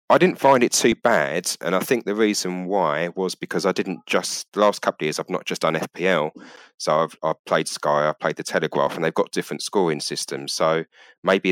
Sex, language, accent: male, English, British